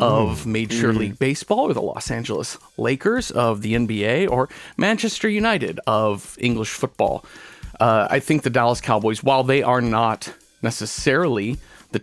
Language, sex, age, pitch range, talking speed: English, male, 40-59, 110-135 Hz, 150 wpm